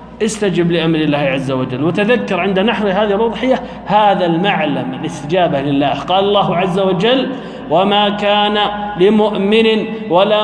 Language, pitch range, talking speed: Arabic, 160-215 Hz, 125 wpm